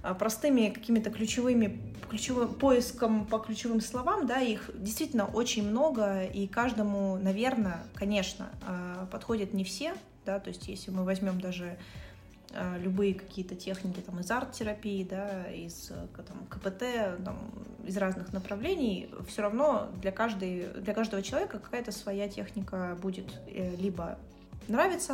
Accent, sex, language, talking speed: native, female, Russian, 120 wpm